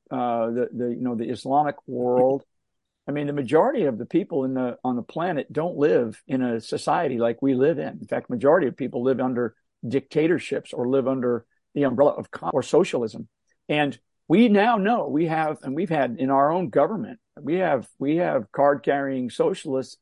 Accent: American